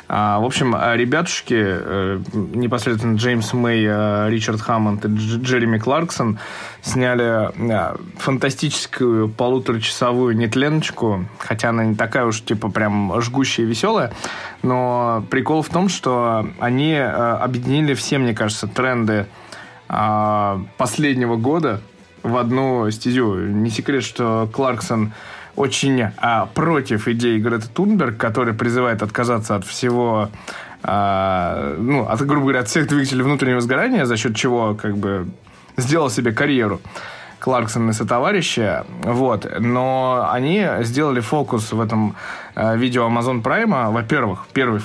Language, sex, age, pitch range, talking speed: Russian, male, 20-39, 110-130 Hz, 120 wpm